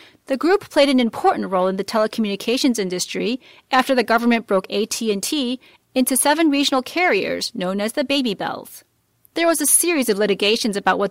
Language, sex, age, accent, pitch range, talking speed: English, female, 30-49, American, 200-285 Hz, 175 wpm